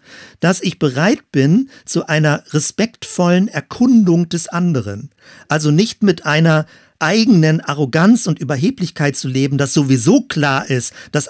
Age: 50-69